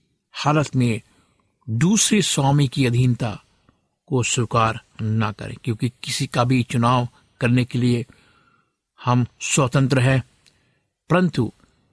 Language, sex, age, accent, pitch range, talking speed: Hindi, male, 60-79, native, 120-145 Hz, 110 wpm